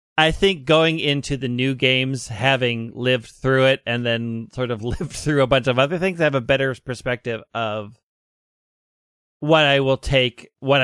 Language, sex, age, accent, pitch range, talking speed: English, male, 30-49, American, 115-140 Hz, 185 wpm